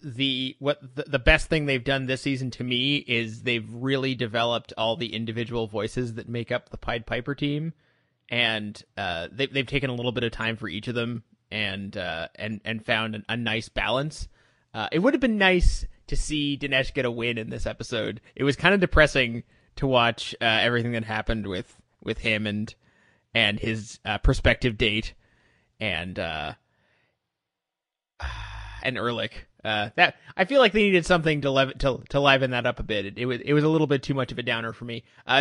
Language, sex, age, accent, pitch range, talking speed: English, male, 20-39, American, 115-140 Hz, 205 wpm